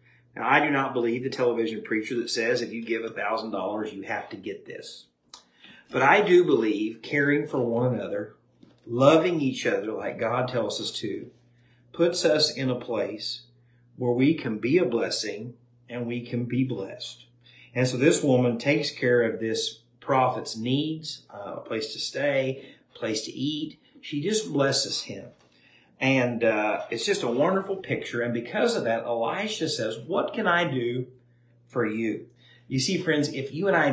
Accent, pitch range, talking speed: American, 115-140 Hz, 180 wpm